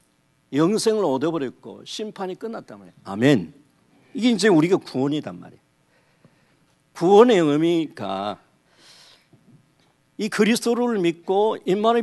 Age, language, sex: 50-69, Korean, male